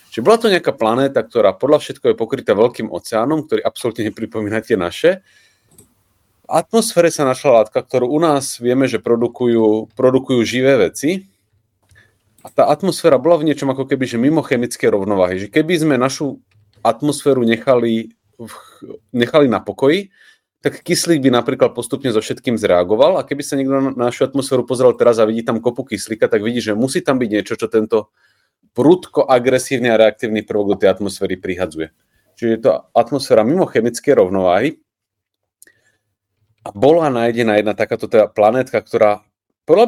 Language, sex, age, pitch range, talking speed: Czech, male, 30-49, 110-140 Hz, 160 wpm